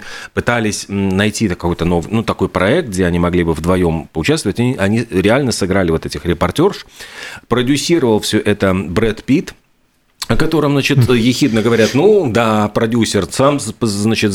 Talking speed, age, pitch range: 145 wpm, 40-59, 90-115 Hz